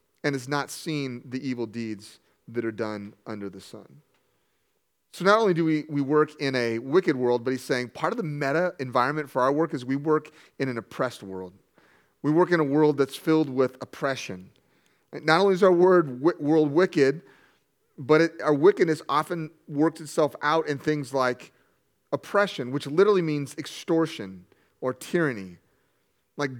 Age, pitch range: 30-49, 130-160 Hz